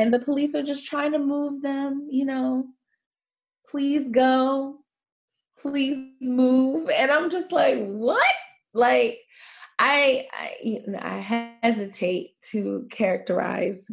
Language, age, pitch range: English, 20-39, 175-260 Hz